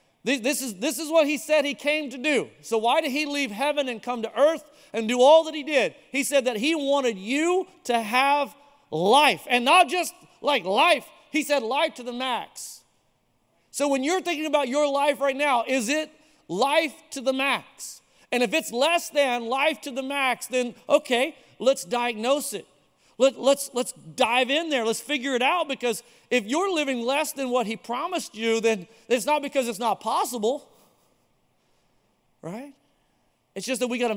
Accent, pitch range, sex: American, 205-285 Hz, male